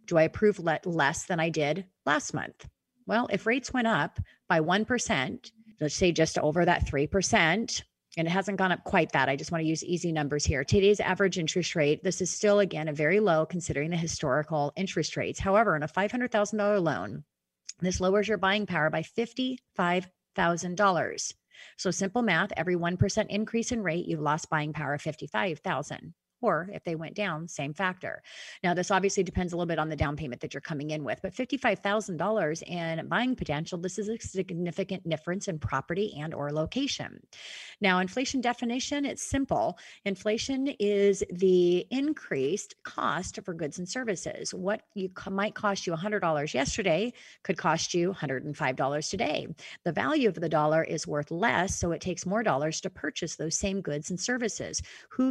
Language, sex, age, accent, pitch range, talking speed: English, female, 30-49, American, 160-210 Hz, 180 wpm